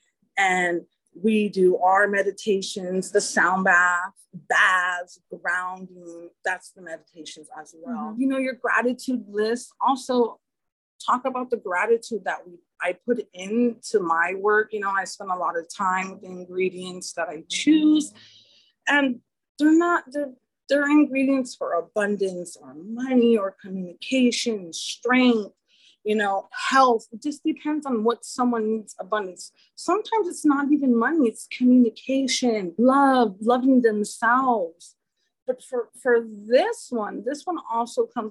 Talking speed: 140 wpm